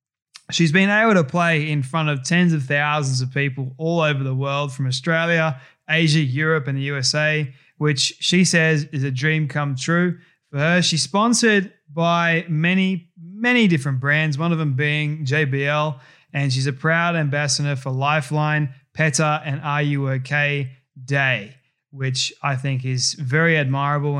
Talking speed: 160 wpm